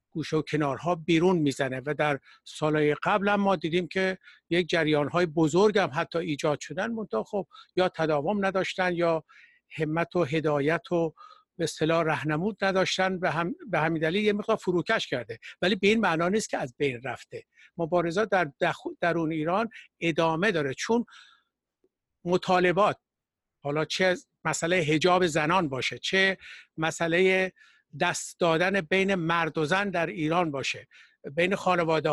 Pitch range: 160-190 Hz